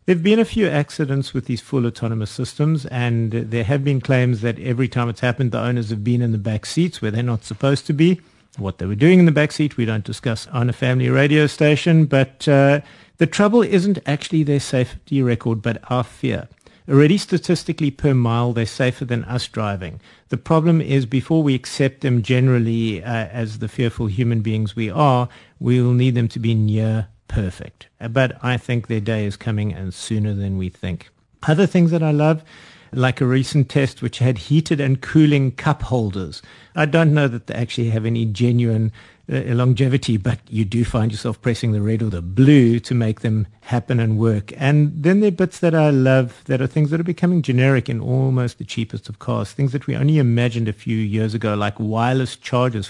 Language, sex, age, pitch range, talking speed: English, male, 50-69, 115-145 Hz, 210 wpm